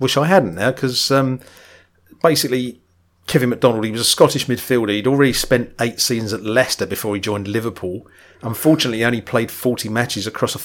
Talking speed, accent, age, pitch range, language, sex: 180 wpm, British, 40-59, 110-135 Hz, English, male